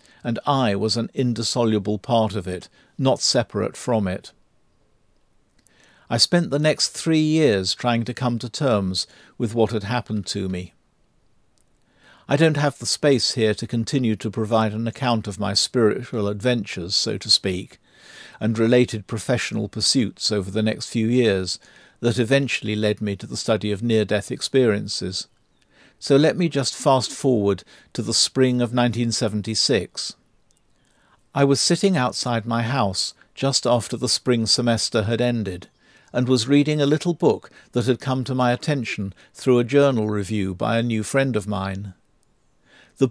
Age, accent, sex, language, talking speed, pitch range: 50-69, British, male, English, 160 wpm, 105-130 Hz